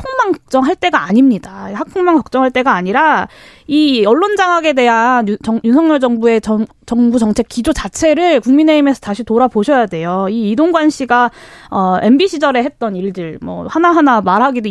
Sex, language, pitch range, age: female, Korean, 215-300 Hz, 20-39